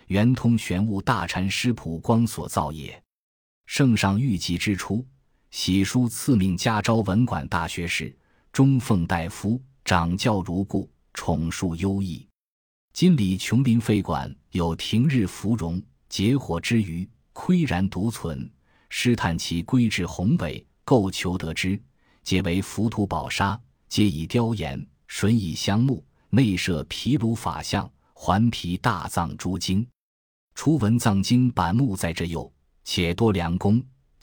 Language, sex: Chinese, male